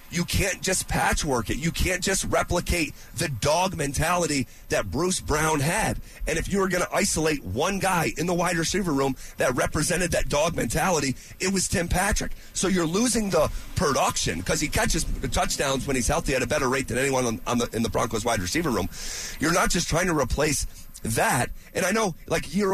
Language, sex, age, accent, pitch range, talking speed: English, male, 30-49, American, 145-200 Hz, 200 wpm